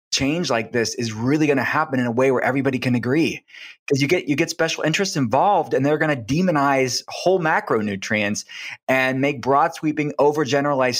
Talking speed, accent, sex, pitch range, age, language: 190 wpm, American, male, 120-145 Hz, 20-39, English